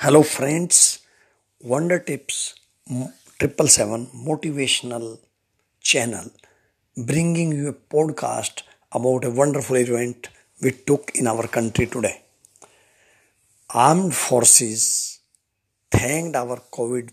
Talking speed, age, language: 90 wpm, 50-69, English